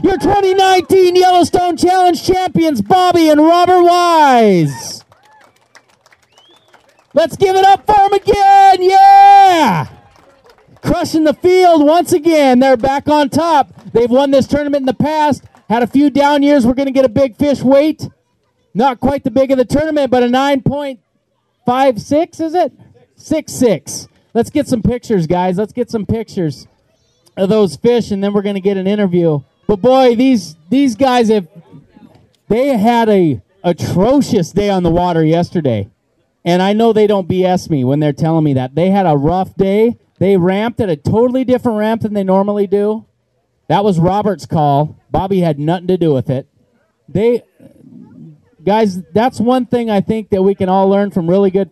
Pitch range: 185-280 Hz